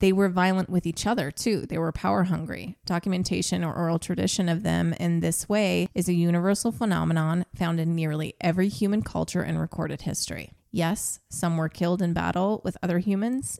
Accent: American